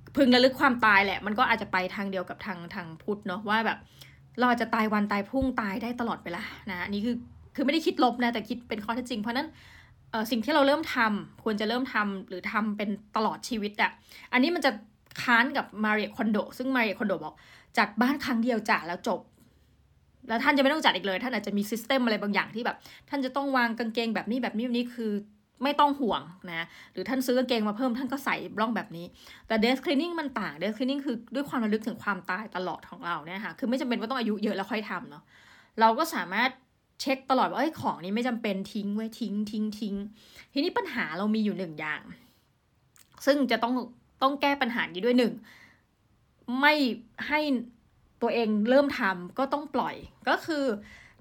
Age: 20-39